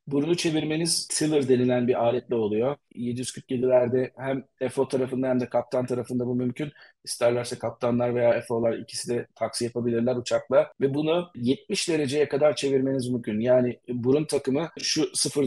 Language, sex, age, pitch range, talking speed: Turkish, male, 40-59, 125-145 Hz, 150 wpm